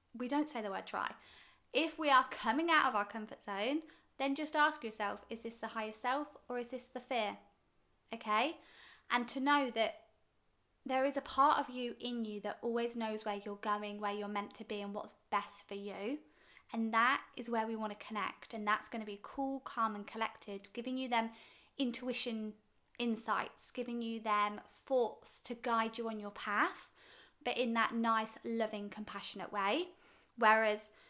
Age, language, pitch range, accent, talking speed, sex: 20-39, English, 215-255 Hz, British, 190 wpm, female